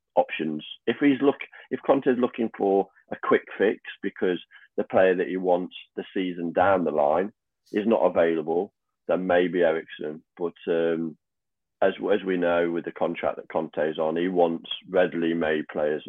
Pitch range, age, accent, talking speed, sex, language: 85-95 Hz, 30-49, British, 175 wpm, male, English